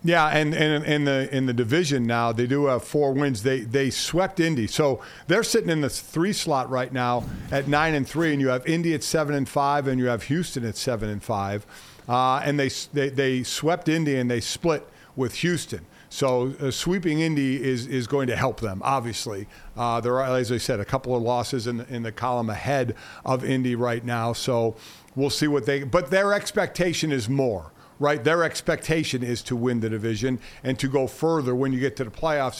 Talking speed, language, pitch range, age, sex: 210 wpm, English, 125-150 Hz, 50-69, male